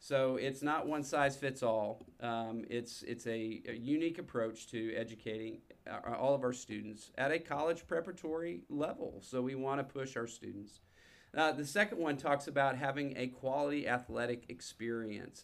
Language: English